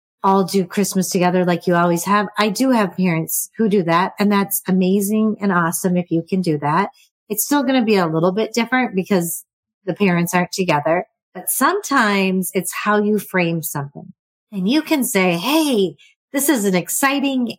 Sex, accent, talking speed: female, American, 190 wpm